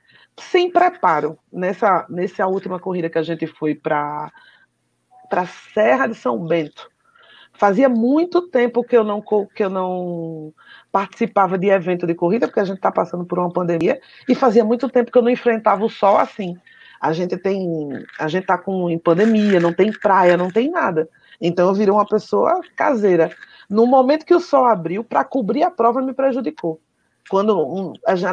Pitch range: 175-245 Hz